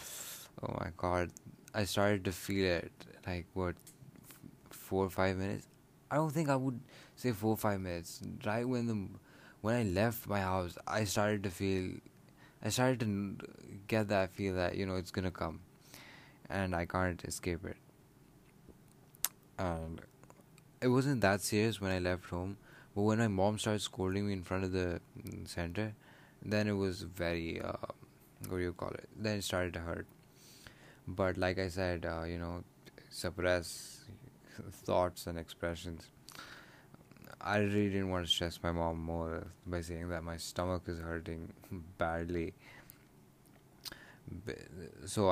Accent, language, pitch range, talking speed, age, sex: Indian, English, 90-110 Hz, 160 wpm, 20-39, male